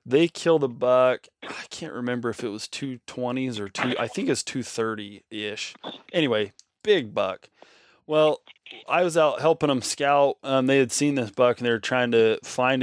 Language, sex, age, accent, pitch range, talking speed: English, male, 20-39, American, 115-145 Hz, 190 wpm